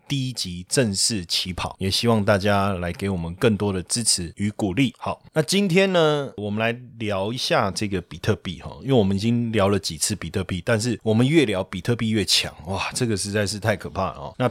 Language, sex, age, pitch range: Chinese, male, 20-39, 100-125 Hz